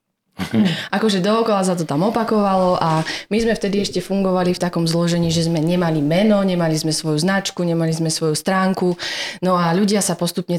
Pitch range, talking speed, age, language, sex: 160-195 Hz, 180 wpm, 20-39, Slovak, female